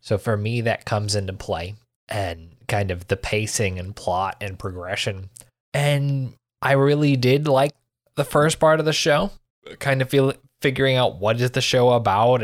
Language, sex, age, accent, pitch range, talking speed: English, male, 20-39, American, 105-130 Hz, 180 wpm